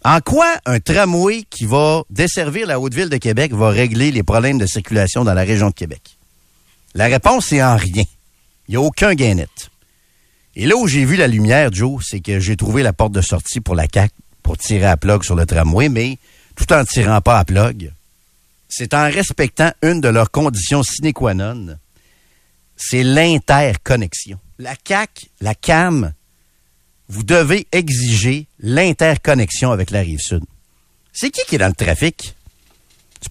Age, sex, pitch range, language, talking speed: 50-69, male, 100-160 Hz, French, 180 wpm